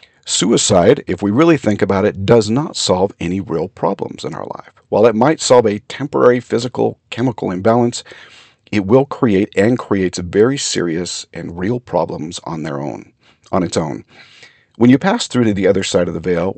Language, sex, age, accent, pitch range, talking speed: English, male, 50-69, American, 95-120 Hz, 180 wpm